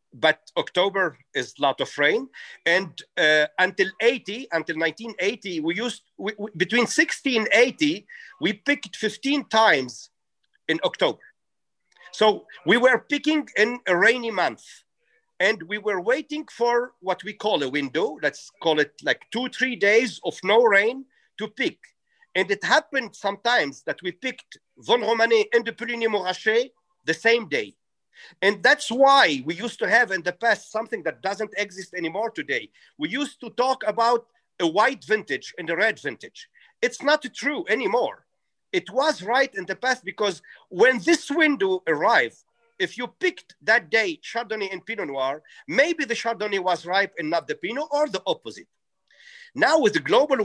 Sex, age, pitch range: male, 50-69, 195-275 Hz